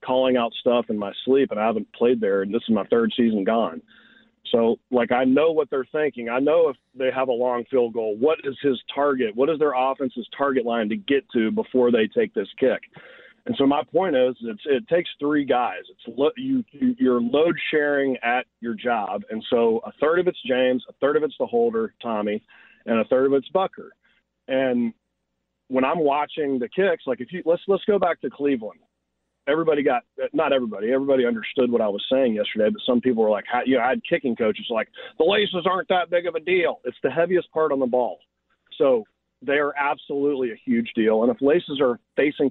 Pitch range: 115-160 Hz